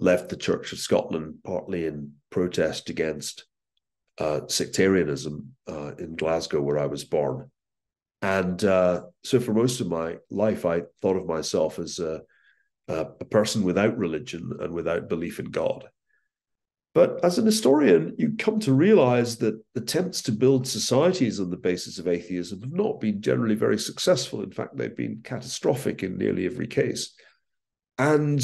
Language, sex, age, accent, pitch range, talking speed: Hebrew, male, 50-69, British, 100-140 Hz, 160 wpm